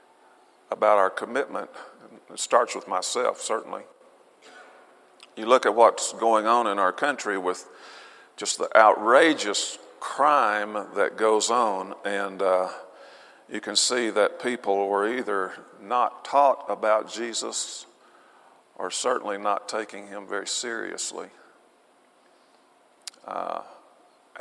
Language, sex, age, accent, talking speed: English, male, 50-69, American, 115 wpm